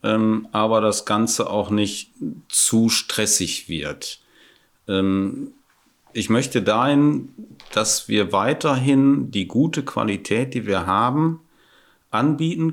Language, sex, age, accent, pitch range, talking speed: German, male, 40-59, German, 95-125 Hz, 110 wpm